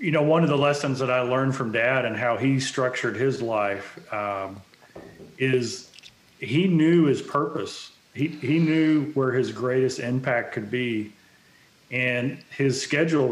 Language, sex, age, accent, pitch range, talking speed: English, male, 40-59, American, 125-150 Hz, 160 wpm